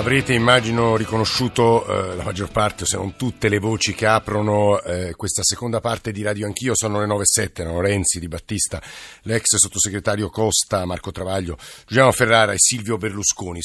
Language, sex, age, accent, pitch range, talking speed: Italian, male, 50-69, native, 95-120 Hz, 165 wpm